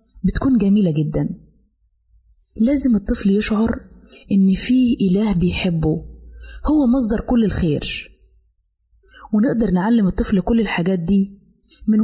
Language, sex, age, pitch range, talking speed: Arabic, female, 20-39, 185-235 Hz, 105 wpm